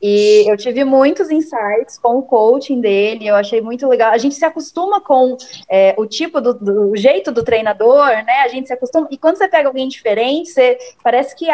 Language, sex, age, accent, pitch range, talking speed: Portuguese, female, 20-39, Brazilian, 220-285 Hz, 200 wpm